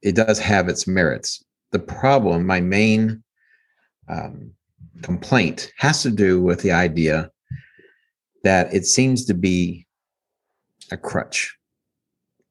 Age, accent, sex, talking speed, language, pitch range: 50-69, American, male, 115 wpm, English, 90-115 Hz